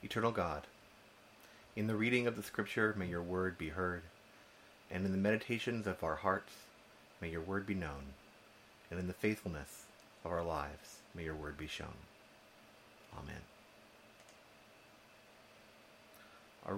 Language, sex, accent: English, male, American